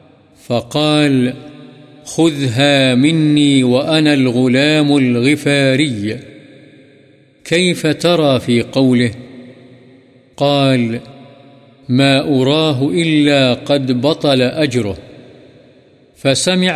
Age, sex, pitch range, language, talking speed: 50-69, male, 130-150 Hz, Urdu, 65 wpm